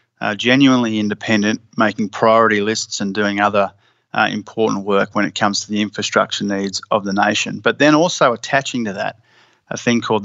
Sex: male